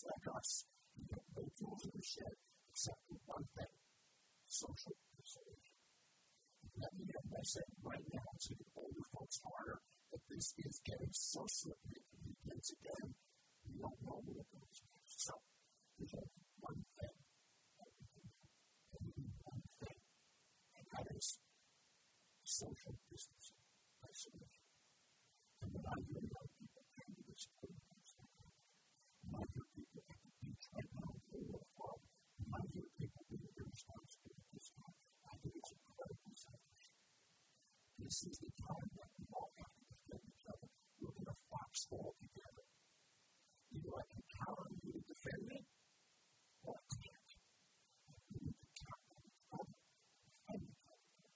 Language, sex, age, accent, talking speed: English, female, 40-59, American, 115 wpm